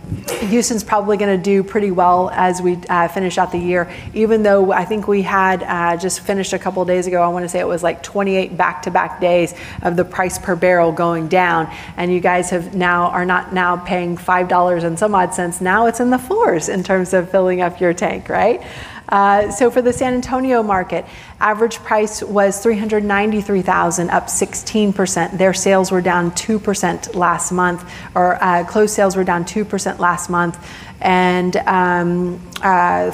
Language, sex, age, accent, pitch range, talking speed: English, female, 40-59, American, 175-200 Hz, 185 wpm